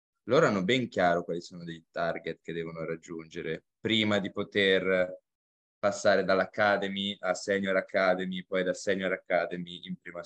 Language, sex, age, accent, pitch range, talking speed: Italian, male, 20-39, native, 95-120 Hz, 145 wpm